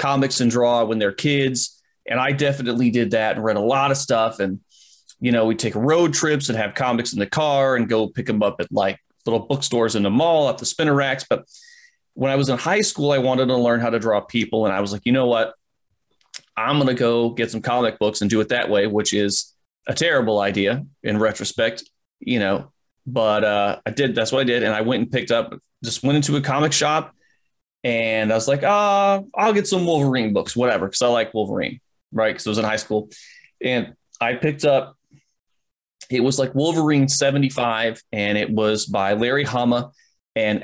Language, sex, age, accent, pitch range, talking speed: English, male, 30-49, American, 110-140 Hz, 220 wpm